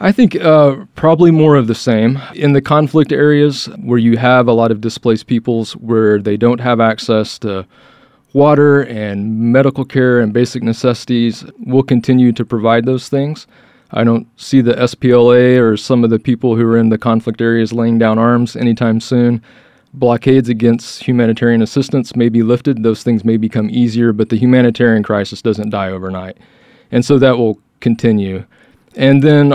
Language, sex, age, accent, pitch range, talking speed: English, male, 30-49, American, 115-130 Hz, 175 wpm